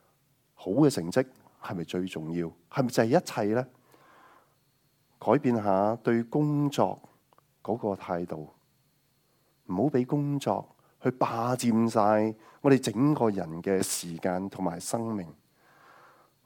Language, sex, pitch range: Chinese, male, 95-140 Hz